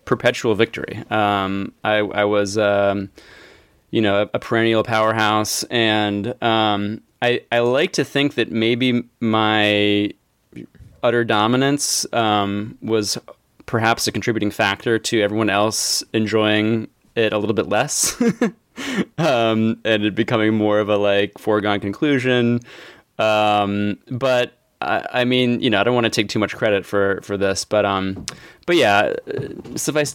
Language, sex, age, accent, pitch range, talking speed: English, male, 20-39, American, 105-115 Hz, 145 wpm